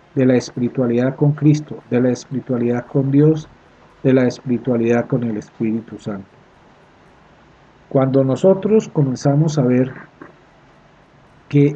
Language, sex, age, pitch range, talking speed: Spanish, male, 50-69, 130-150 Hz, 115 wpm